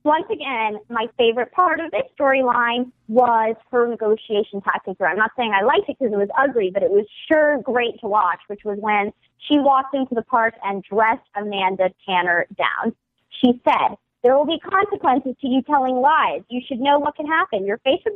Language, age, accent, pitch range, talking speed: English, 30-49, American, 210-275 Hz, 205 wpm